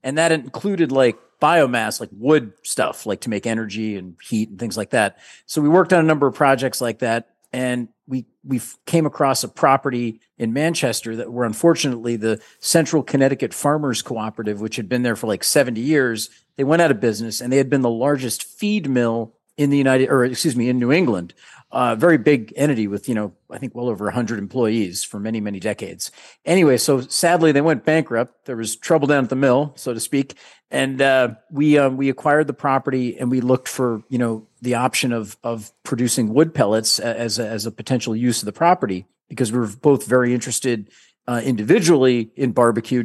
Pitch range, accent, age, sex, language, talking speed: 115-140 Hz, American, 40-59, male, English, 210 wpm